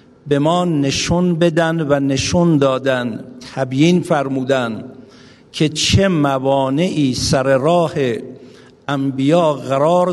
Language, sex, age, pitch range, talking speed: Persian, male, 50-69, 135-165 Hz, 95 wpm